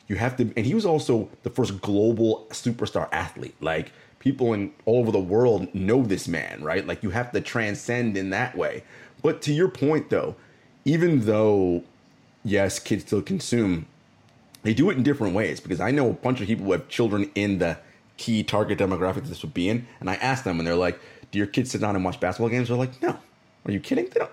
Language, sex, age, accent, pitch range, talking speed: English, male, 30-49, American, 100-135 Hz, 220 wpm